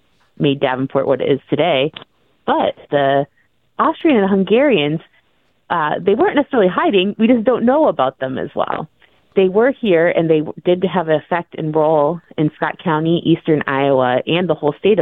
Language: English